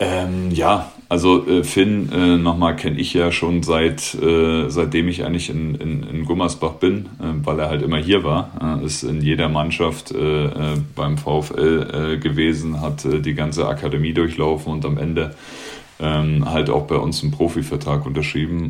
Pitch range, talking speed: 75-85 Hz, 175 wpm